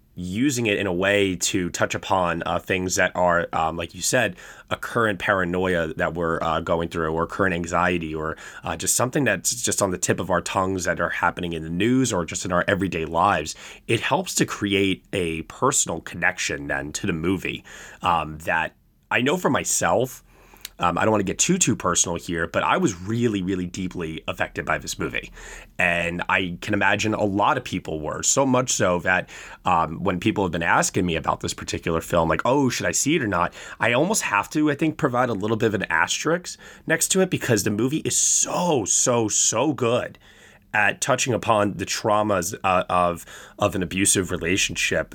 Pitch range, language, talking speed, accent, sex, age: 85-105 Hz, English, 205 wpm, American, male, 20-39